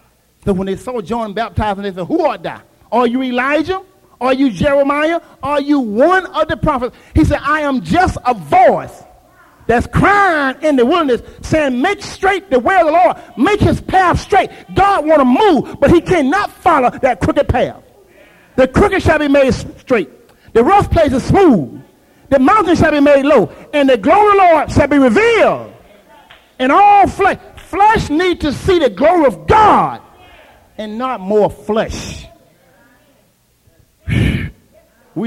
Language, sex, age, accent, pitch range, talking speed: English, male, 40-59, American, 225-315 Hz, 170 wpm